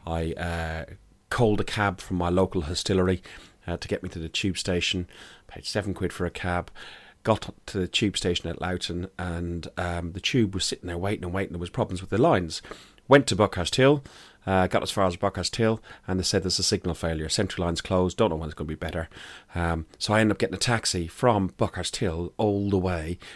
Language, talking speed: English, 230 wpm